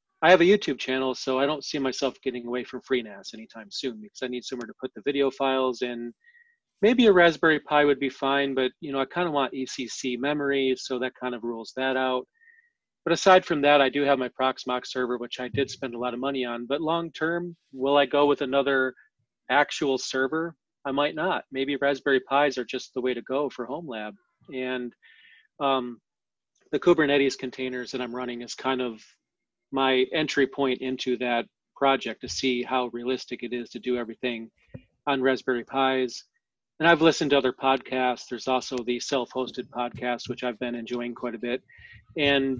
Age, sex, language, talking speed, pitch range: 30-49, male, English, 200 wpm, 125-145 Hz